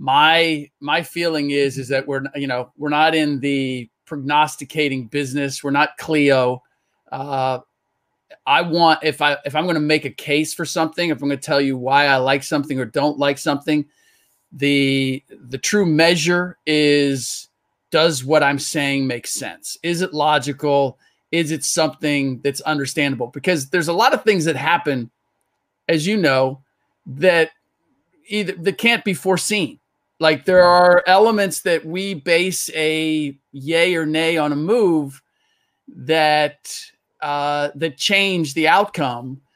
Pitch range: 135-160 Hz